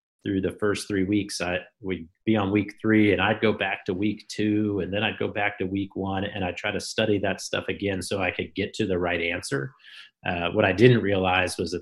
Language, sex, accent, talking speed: English, male, American, 250 wpm